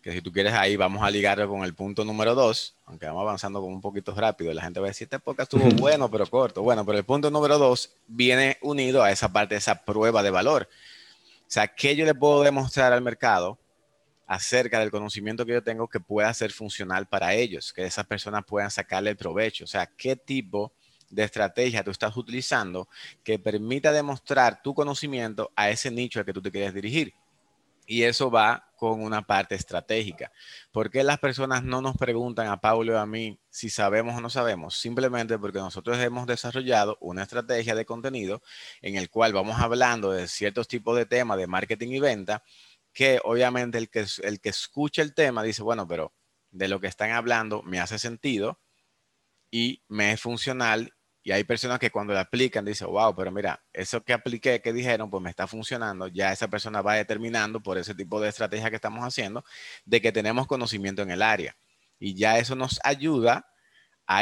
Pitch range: 105-125 Hz